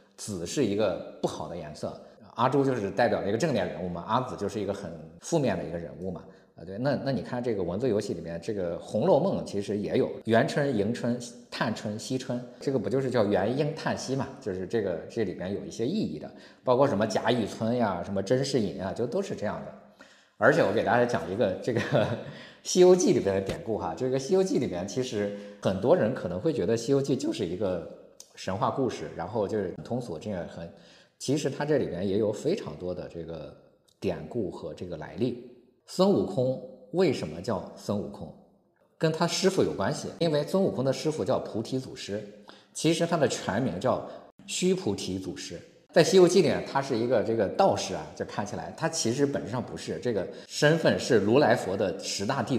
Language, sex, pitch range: Chinese, male, 105-150 Hz